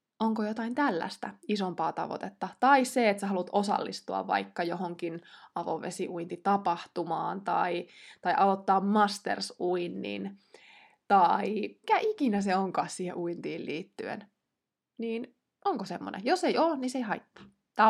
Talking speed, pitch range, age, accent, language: 120 wpm, 185-245 Hz, 20-39, native, Finnish